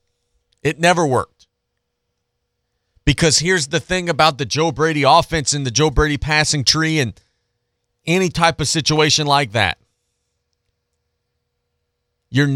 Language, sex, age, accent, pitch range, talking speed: English, male, 40-59, American, 95-150 Hz, 125 wpm